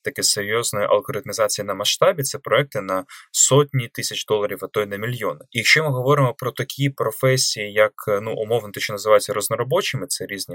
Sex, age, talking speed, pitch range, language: male, 20-39, 180 wpm, 105-140 Hz, Ukrainian